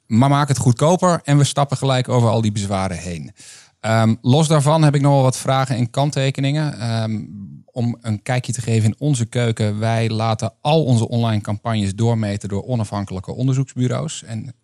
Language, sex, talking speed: Dutch, male, 175 wpm